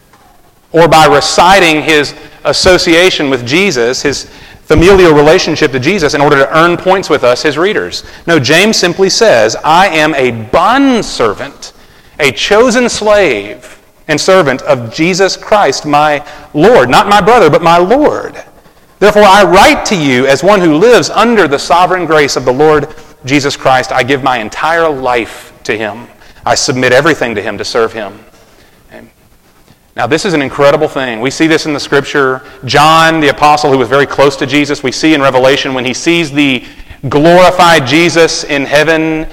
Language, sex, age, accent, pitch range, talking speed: English, male, 40-59, American, 135-170 Hz, 170 wpm